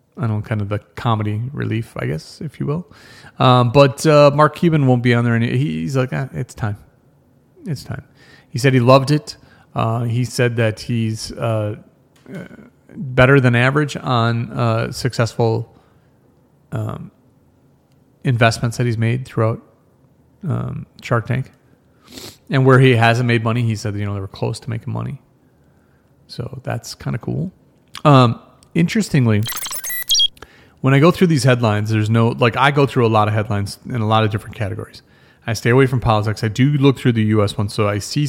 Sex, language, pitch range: male, English, 110-130 Hz